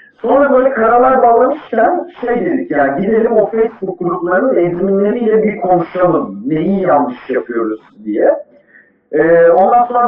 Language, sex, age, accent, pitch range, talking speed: Turkish, male, 50-69, native, 155-245 Hz, 125 wpm